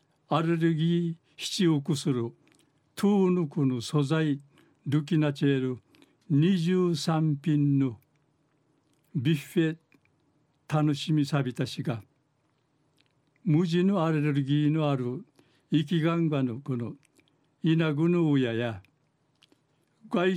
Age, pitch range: 60-79, 140-160 Hz